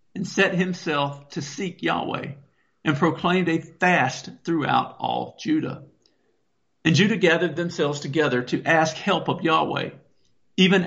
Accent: American